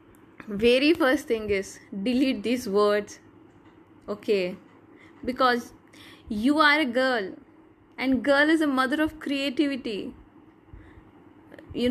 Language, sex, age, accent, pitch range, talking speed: Hindi, female, 10-29, native, 240-315 Hz, 105 wpm